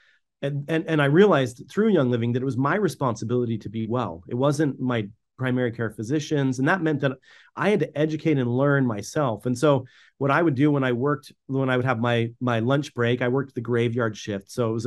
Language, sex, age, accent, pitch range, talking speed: English, male, 30-49, American, 120-150 Hz, 235 wpm